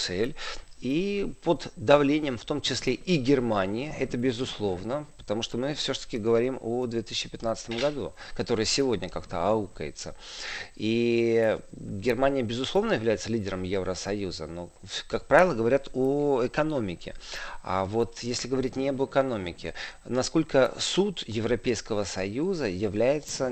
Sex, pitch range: male, 115-140 Hz